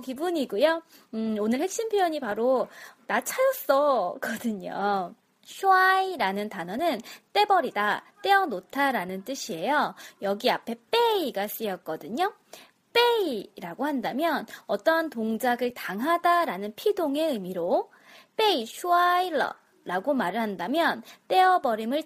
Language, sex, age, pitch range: Korean, female, 20-39, 215-340 Hz